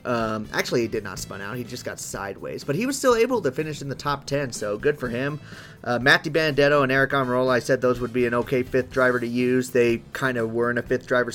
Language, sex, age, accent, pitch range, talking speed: English, male, 30-49, American, 120-150 Hz, 270 wpm